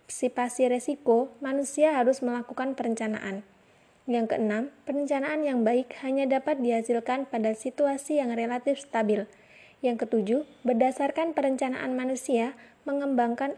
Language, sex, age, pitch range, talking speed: Indonesian, female, 20-39, 230-275 Hz, 110 wpm